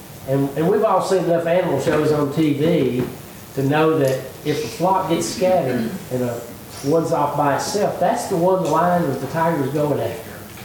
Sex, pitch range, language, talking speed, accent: male, 115-155 Hz, English, 185 wpm, American